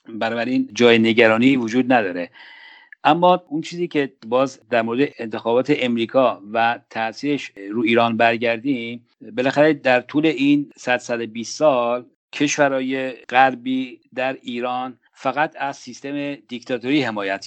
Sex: male